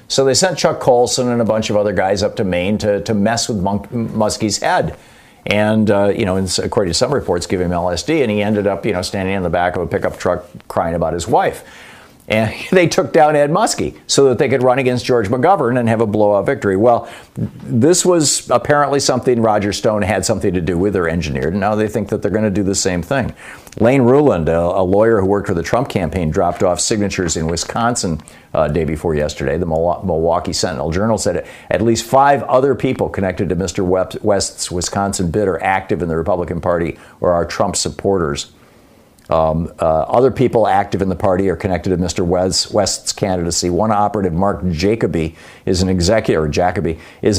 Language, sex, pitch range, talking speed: English, male, 90-110 Hz, 205 wpm